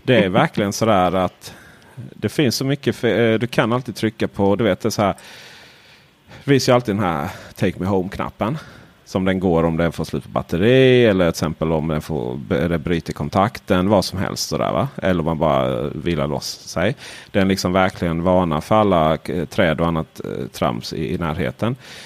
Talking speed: 190 wpm